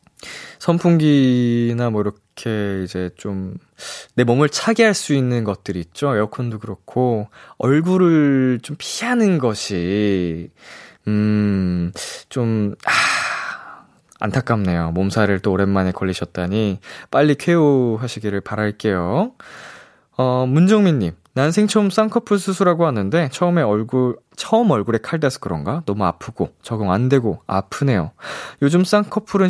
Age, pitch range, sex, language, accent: 20-39, 105-170 Hz, male, Korean, native